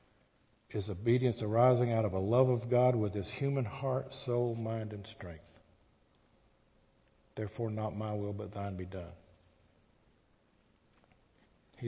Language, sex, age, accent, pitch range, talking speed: English, male, 50-69, American, 100-135 Hz, 130 wpm